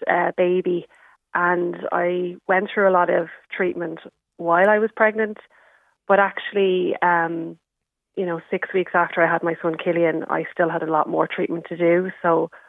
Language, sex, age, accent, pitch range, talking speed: English, female, 30-49, Irish, 170-185 Hz, 175 wpm